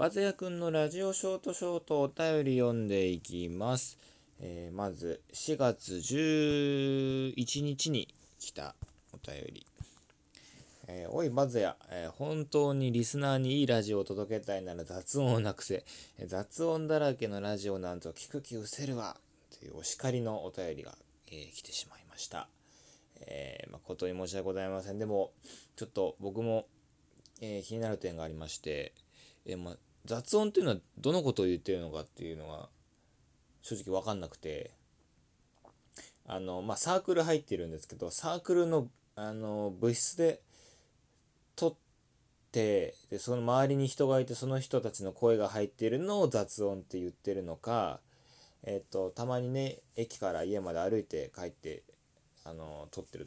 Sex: male